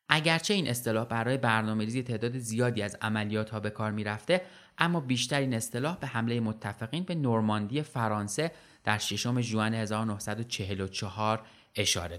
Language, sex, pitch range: Persian, male, 110-160 Hz